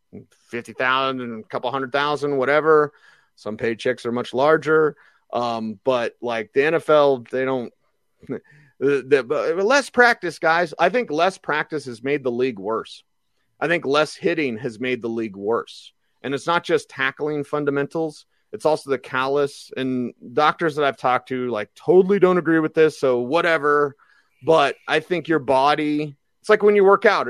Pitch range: 135-190 Hz